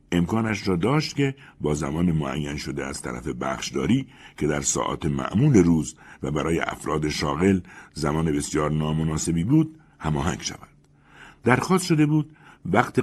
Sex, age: male, 60-79